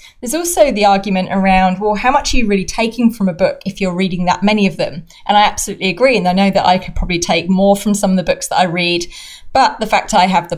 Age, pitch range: 30-49, 185-255 Hz